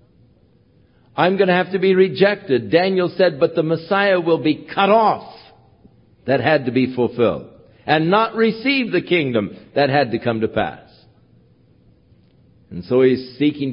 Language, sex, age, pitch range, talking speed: English, male, 60-79, 110-145 Hz, 155 wpm